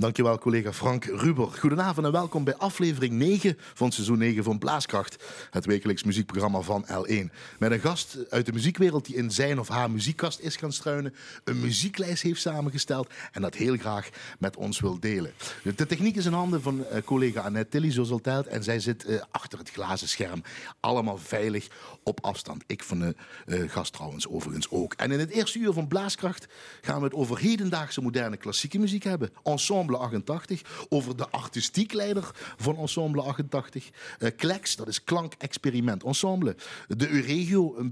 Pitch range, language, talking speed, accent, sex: 120-170 Hz, Dutch, 175 wpm, Dutch, male